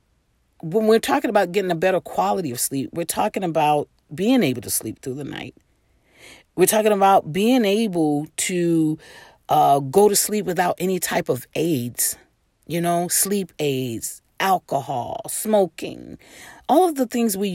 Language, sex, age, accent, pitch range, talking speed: English, female, 40-59, American, 160-225 Hz, 155 wpm